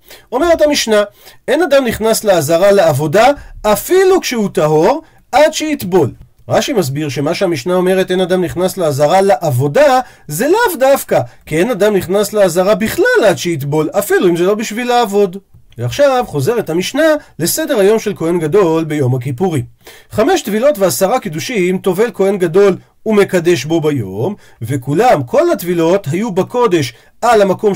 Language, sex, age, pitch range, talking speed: Hebrew, male, 40-59, 150-225 Hz, 145 wpm